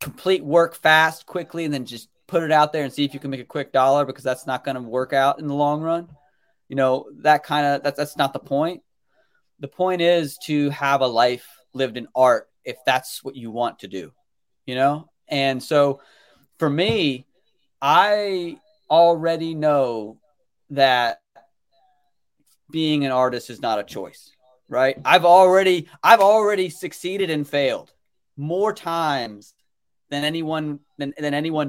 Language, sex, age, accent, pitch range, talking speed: English, male, 30-49, American, 135-170 Hz, 170 wpm